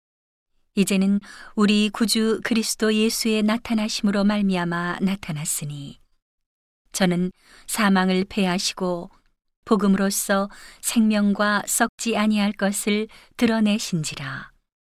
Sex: female